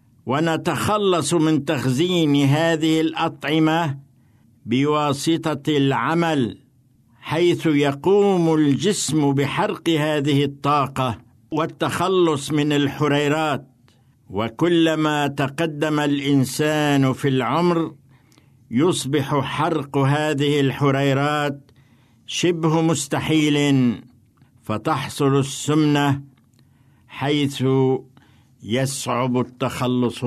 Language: Arabic